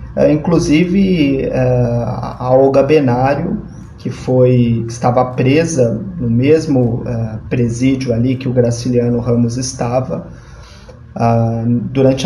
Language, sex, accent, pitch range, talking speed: Portuguese, male, Brazilian, 120-140 Hz, 115 wpm